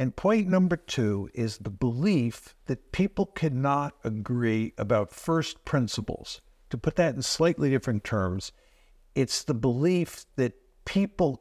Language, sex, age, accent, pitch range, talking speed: English, male, 60-79, American, 120-160 Hz, 135 wpm